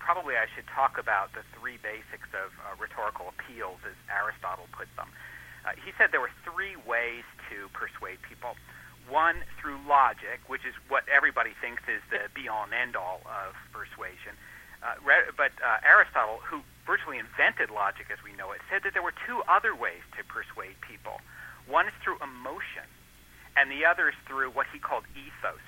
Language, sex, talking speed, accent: English, male, 180 wpm, American